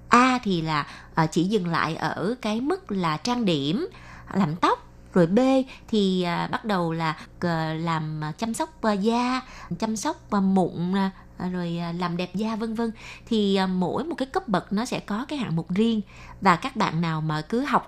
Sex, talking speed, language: female, 180 wpm, Vietnamese